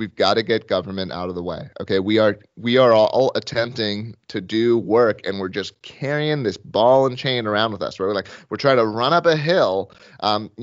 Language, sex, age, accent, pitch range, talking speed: English, male, 30-49, American, 105-125 Hz, 230 wpm